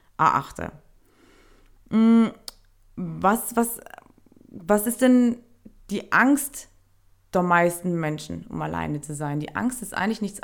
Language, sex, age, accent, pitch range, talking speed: German, female, 20-39, German, 180-215 Hz, 115 wpm